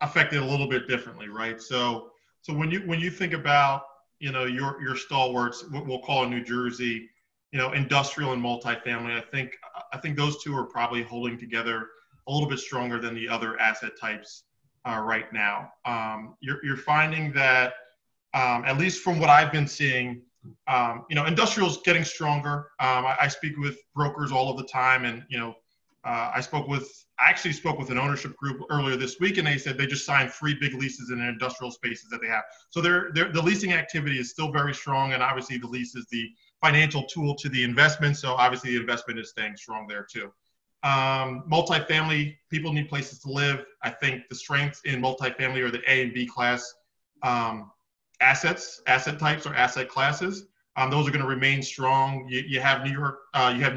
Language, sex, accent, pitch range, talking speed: English, male, American, 125-145 Hz, 205 wpm